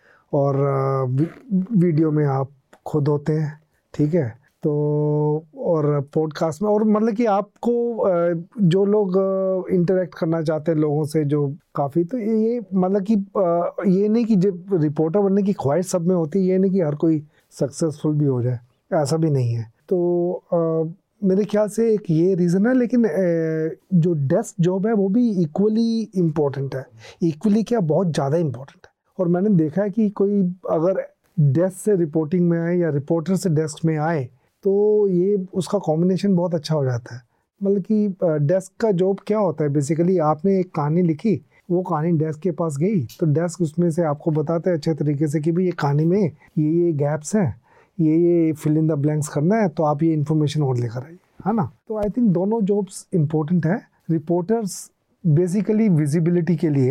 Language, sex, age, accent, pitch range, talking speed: English, male, 30-49, Indian, 155-195 Hz, 140 wpm